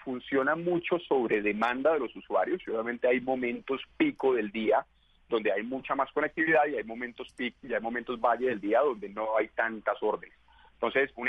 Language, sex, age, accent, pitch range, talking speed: Spanish, male, 30-49, Colombian, 115-145 Hz, 185 wpm